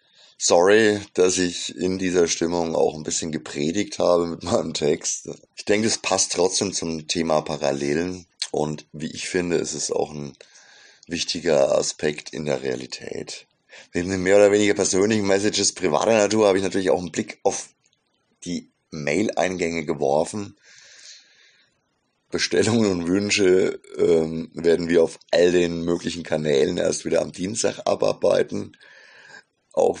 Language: German